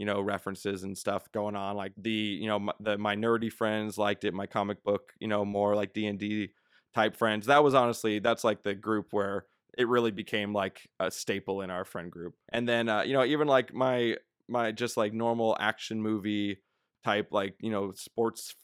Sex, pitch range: male, 100-115 Hz